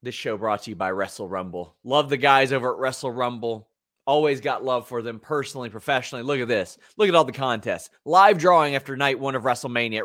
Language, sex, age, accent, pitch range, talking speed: English, male, 30-49, American, 120-150 Hz, 225 wpm